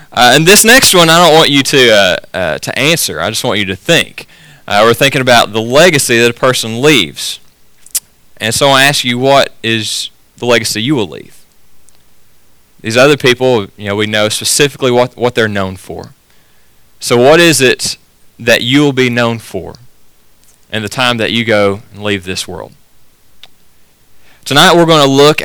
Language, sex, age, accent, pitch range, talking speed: English, male, 20-39, American, 110-155 Hz, 185 wpm